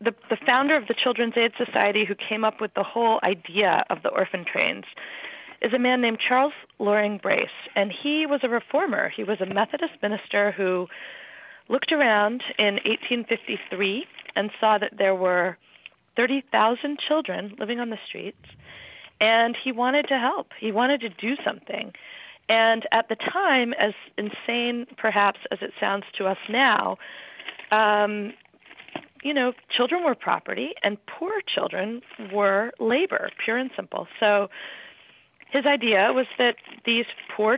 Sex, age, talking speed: female, 40-59, 155 wpm